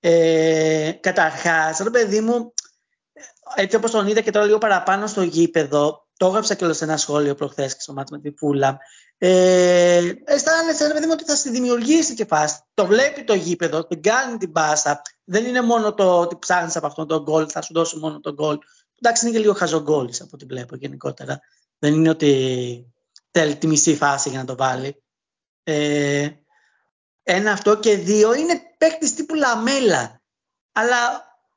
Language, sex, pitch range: Greek, male, 160-235 Hz